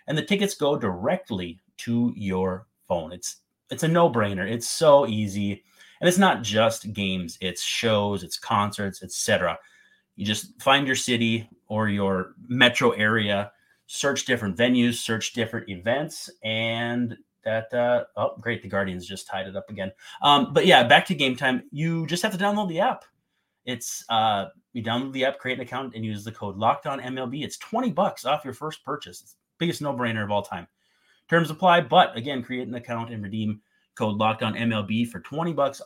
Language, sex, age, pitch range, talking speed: English, male, 30-49, 100-145 Hz, 180 wpm